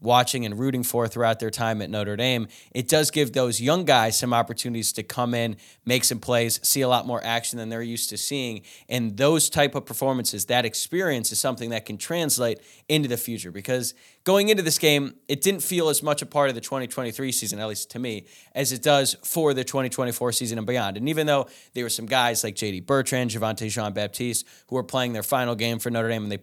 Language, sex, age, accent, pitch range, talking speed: English, male, 20-39, American, 115-135 Hz, 230 wpm